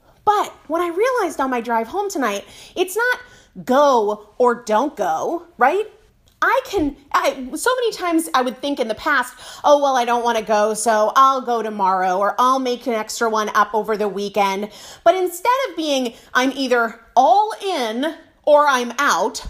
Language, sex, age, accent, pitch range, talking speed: English, female, 30-49, American, 245-370 Hz, 180 wpm